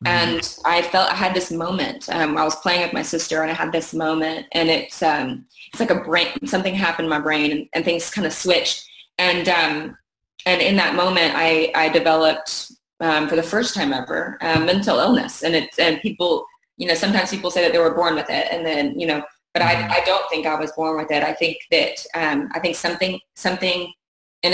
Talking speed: 225 wpm